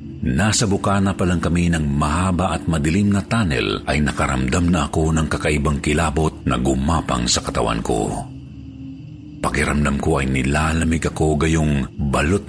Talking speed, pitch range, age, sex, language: 140 wpm, 70-95 Hz, 50-69, male, Filipino